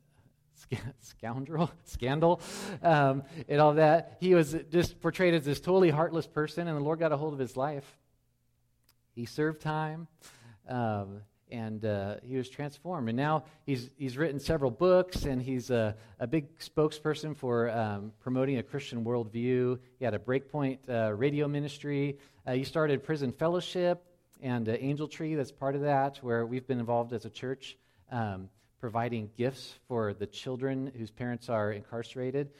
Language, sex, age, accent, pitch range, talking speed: English, male, 40-59, American, 115-155 Hz, 165 wpm